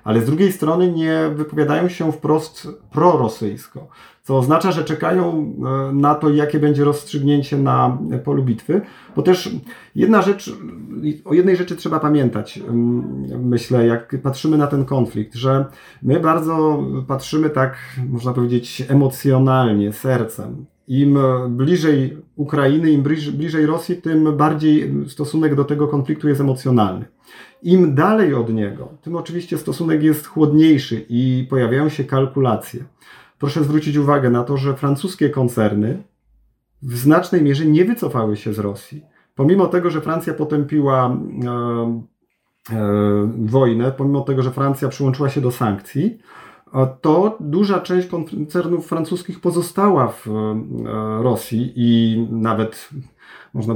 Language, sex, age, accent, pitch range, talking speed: Polish, male, 40-59, native, 120-155 Hz, 125 wpm